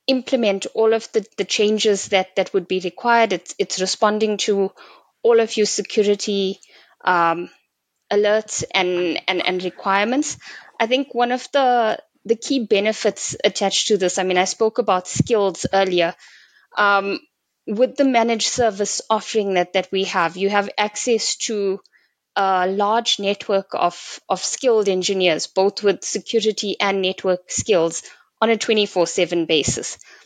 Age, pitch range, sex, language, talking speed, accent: 20-39, 190-230 Hz, female, English, 145 wpm, Indian